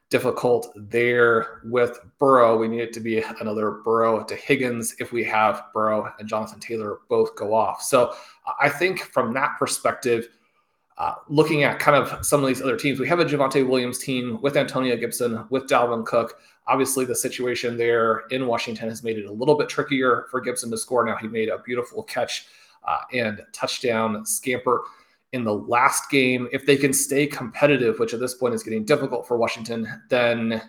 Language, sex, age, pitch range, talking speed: English, male, 30-49, 110-130 Hz, 190 wpm